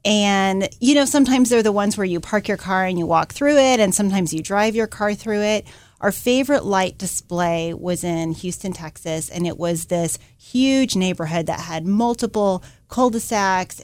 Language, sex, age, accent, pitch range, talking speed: English, female, 30-49, American, 175-225 Hz, 185 wpm